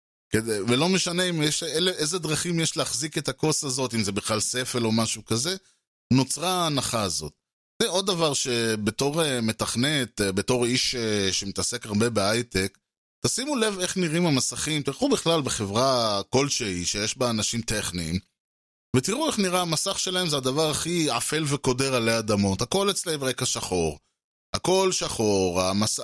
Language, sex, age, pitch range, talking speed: Hebrew, male, 20-39, 110-160 Hz, 145 wpm